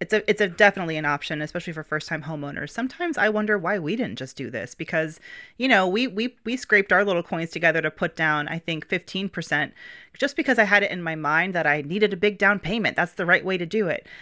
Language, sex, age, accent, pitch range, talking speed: English, female, 30-49, American, 155-205 Hz, 250 wpm